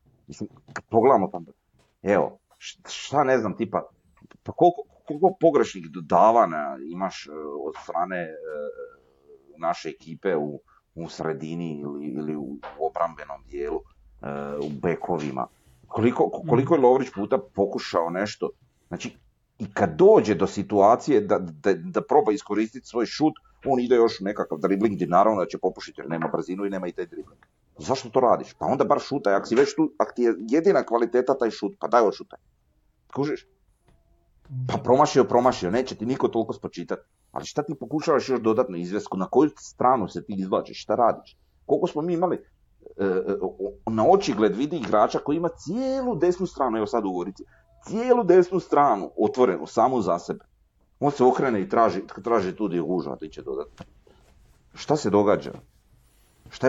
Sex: male